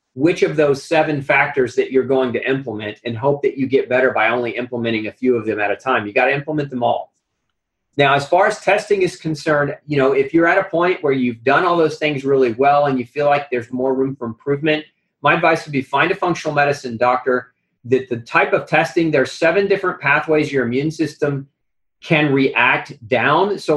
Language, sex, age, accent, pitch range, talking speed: English, male, 30-49, American, 125-155 Hz, 220 wpm